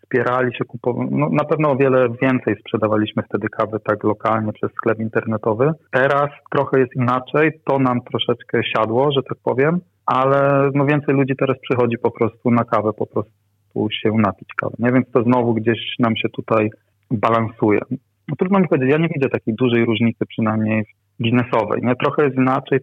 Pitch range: 110-130 Hz